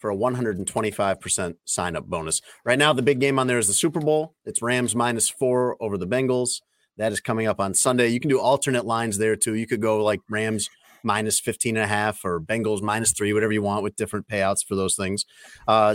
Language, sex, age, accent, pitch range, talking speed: English, male, 30-49, American, 100-125 Hz, 225 wpm